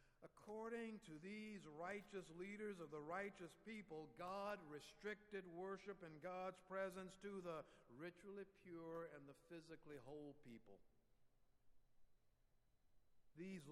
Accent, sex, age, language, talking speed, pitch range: American, male, 60-79, English, 110 wpm, 150-210 Hz